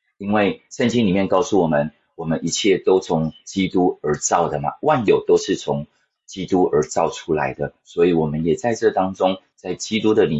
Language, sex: Chinese, male